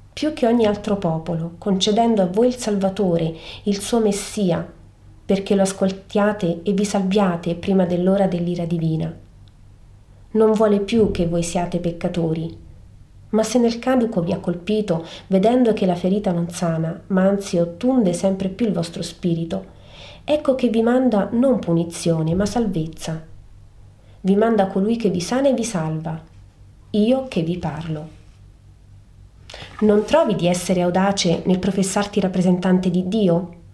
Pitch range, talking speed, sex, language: 160-215 Hz, 145 wpm, female, Italian